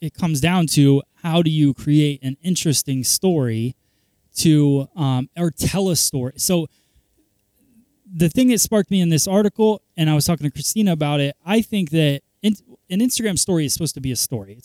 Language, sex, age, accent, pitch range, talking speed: English, male, 20-39, American, 130-170 Hz, 195 wpm